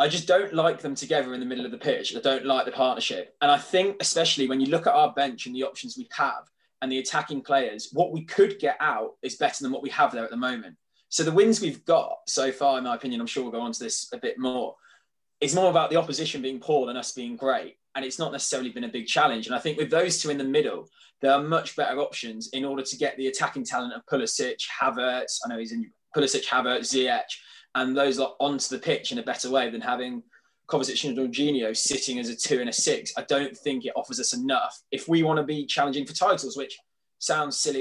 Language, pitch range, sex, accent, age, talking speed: English, 125-165 Hz, male, British, 20-39, 255 wpm